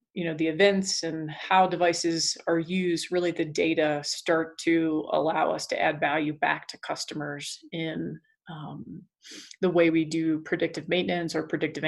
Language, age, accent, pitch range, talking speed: English, 30-49, American, 160-185 Hz, 160 wpm